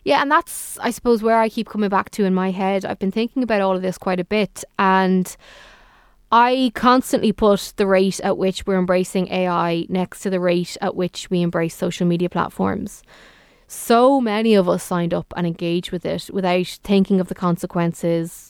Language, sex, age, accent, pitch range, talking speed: English, female, 20-39, Irish, 175-215 Hz, 200 wpm